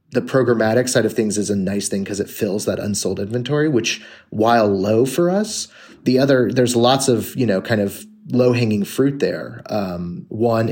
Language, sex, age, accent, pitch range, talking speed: English, male, 30-49, American, 100-120 Hz, 195 wpm